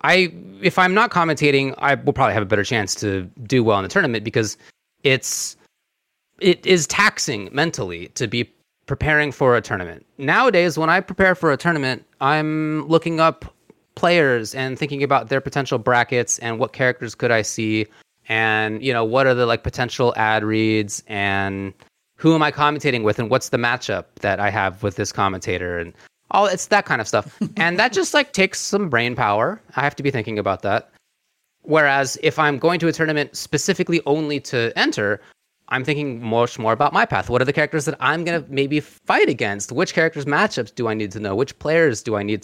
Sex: male